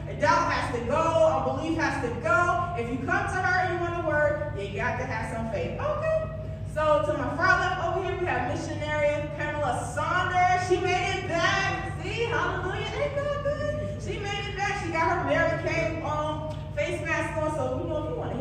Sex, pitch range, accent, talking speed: female, 300-355 Hz, American, 220 wpm